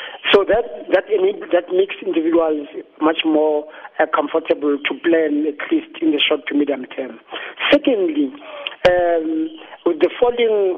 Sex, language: male, English